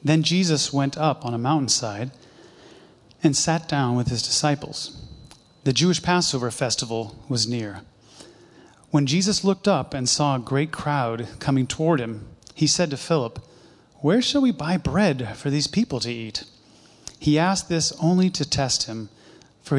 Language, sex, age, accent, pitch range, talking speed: English, male, 30-49, American, 125-165 Hz, 160 wpm